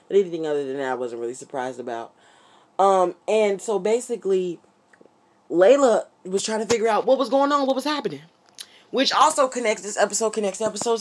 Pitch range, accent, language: 150-190 Hz, American, English